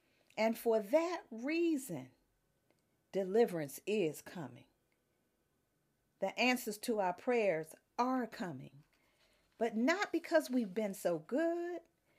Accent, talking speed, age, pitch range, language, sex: American, 105 wpm, 50-69, 195-275 Hz, English, female